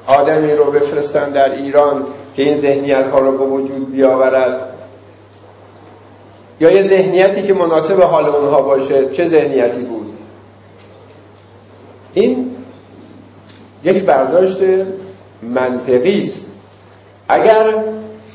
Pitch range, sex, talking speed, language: 105-160 Hz, male, 95 wpm, Persian